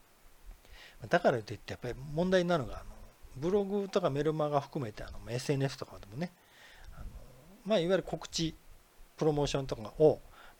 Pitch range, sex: 120-185 Hz, male